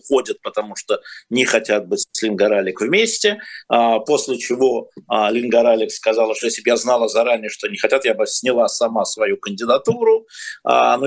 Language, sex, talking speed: Russian, male, 165 wpm